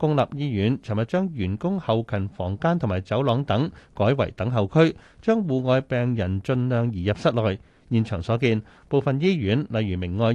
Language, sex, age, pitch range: Chinese, male, 30-49, 105-140 Hz